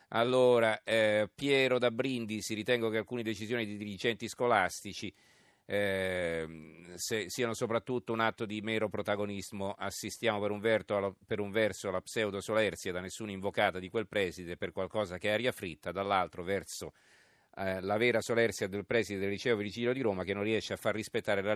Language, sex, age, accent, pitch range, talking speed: Italian, male, 40-59, native, 95-115 Hz, 175 wpm